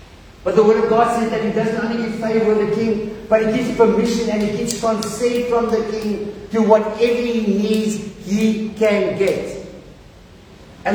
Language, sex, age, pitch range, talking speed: English, male, 50-69, 205-230 Hz, 190 wpm